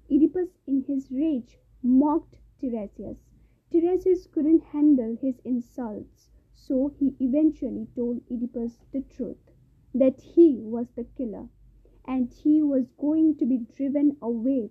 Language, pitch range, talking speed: English, 245-315 Hz, 125 wpm